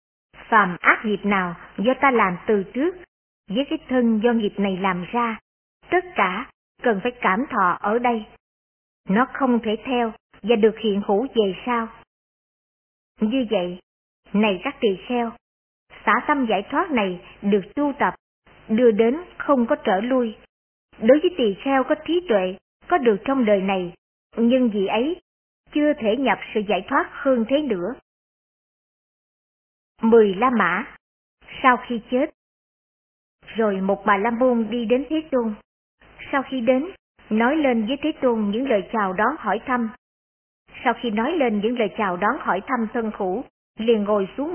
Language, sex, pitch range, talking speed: Vietnamese, male, 210-260 Hz, 165 wpm